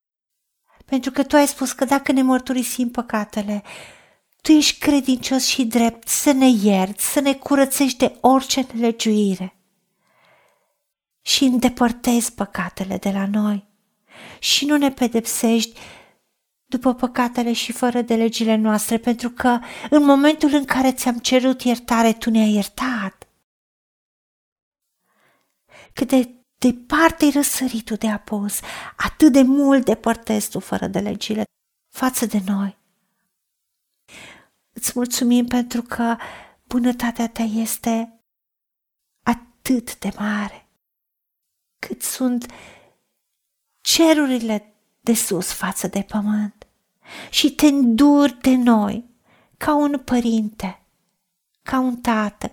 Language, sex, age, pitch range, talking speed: Romanian, female, 50-69, 210-260 Hz, 110 wpm